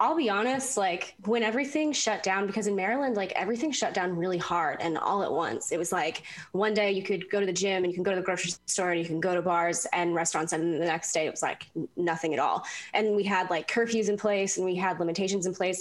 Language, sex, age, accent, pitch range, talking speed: English, female, 10-29, American, 175-220 Hz, 270 wpm